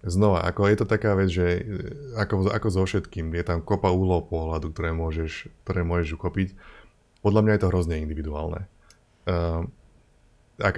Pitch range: 80-100 Hz